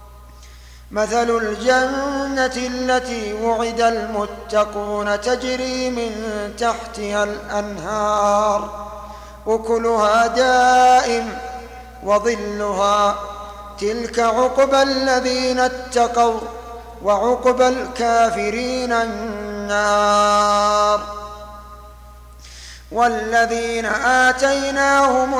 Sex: male